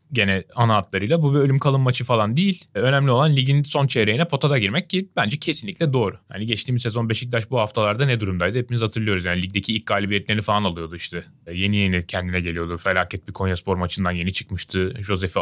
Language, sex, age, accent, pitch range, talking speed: Turkish, male, 30-49, native, 95-130 Hz, 190 wpm